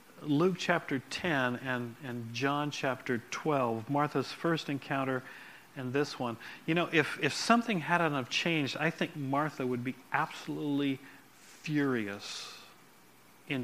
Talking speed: 130 wpm